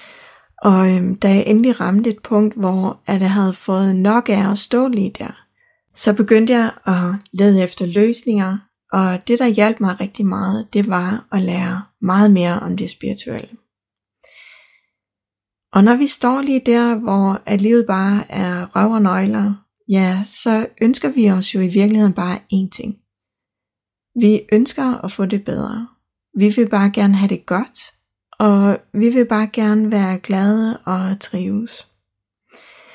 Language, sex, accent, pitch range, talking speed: Danish, female, native, 190-225 Hz, 155 wpm